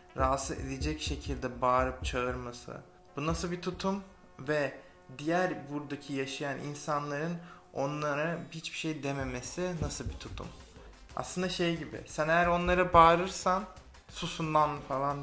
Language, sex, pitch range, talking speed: Turkish, male, 130-165 Hz, 120 wpm